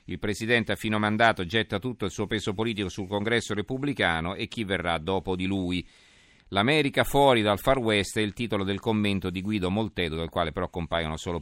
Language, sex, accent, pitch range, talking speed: Italian, male, native, 95-115 Hz, 200 wpm